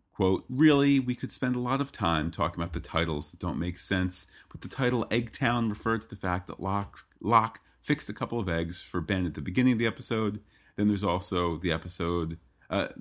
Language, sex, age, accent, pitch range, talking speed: English, male, 30-49, American, 80-100 Hz, 215 wpm